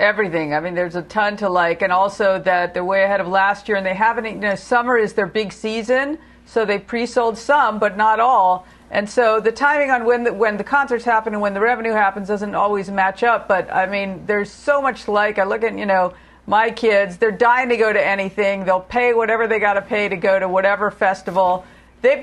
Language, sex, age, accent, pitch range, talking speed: English, female, 50-69, American, 195-235 Hz, 235 wpm